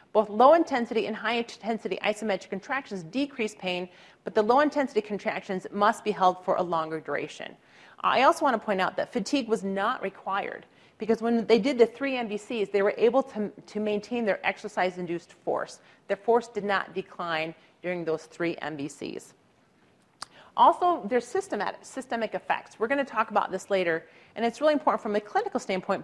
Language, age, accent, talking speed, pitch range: English, 40-59, American, 175 wpm, 175-235 Hz